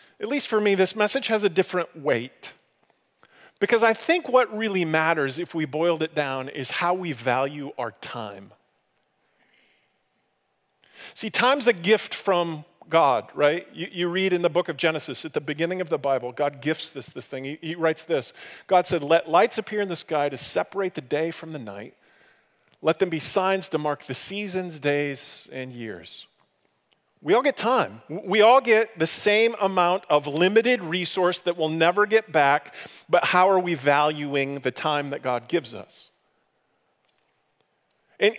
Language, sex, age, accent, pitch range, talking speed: English, male, 40-59, American, 155-210 Hz, 175 wpm